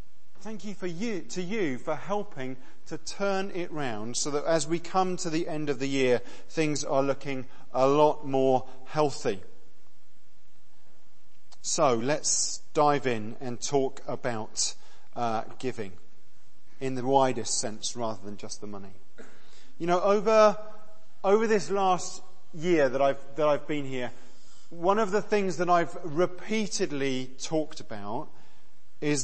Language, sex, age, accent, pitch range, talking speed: English, male, 40-59, British, 135-215 Hz, 145 wpm